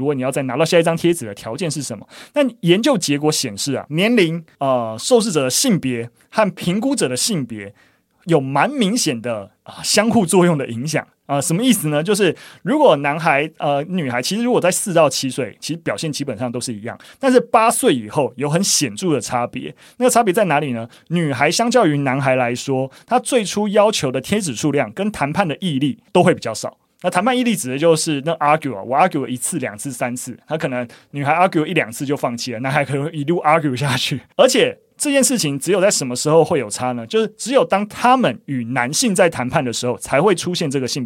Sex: male